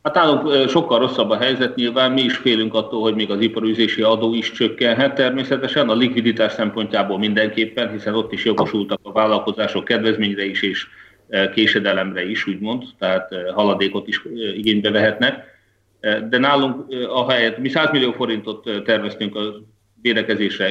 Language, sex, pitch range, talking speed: Hungarian, male, 105-120 Hz, 150 wpm